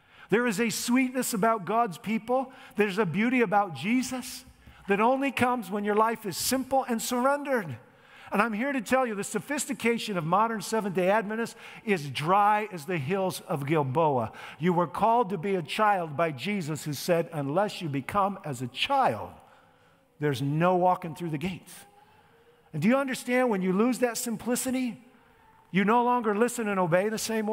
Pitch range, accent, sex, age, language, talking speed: 180-235 Hz, American, male, 50-69, English, 175 wpm